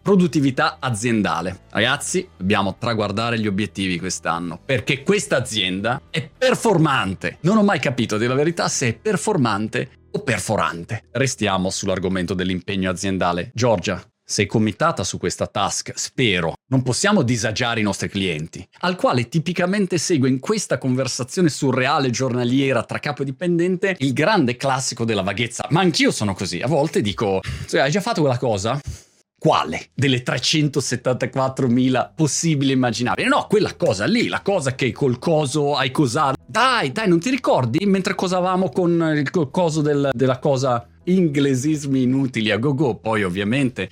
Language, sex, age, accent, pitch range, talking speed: Italian, male, 30-49, native, 105-155 Hz, 145 wpm